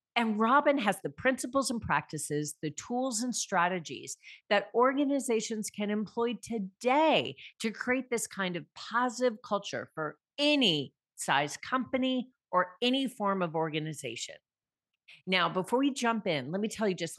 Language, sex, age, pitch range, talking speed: English, female, 40-59, 180-240 Hz, 145 wpm